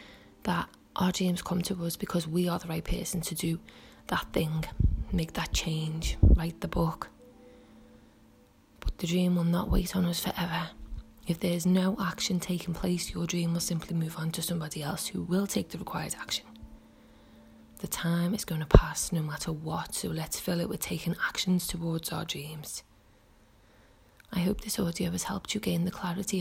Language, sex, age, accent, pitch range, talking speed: English, female, 20-39, British, 155-185 Hz, 185 wpm